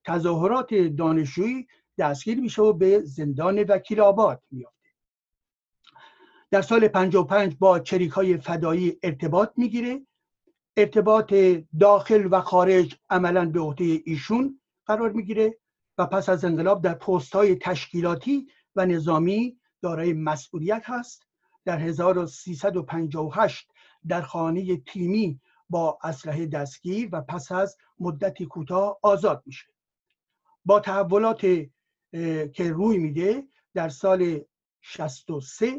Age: 60-79